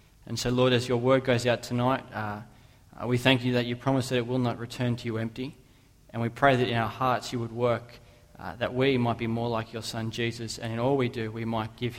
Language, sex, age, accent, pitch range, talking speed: English, male, 20-39, Australian, 125-170 Hz, 260 wpm